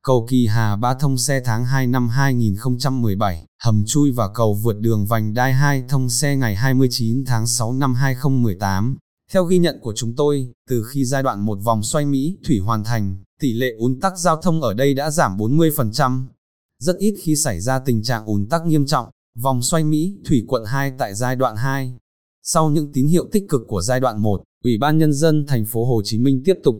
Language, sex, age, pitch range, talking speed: Vietnamese, male, 20-39, 115-145 Hz, 215 wpm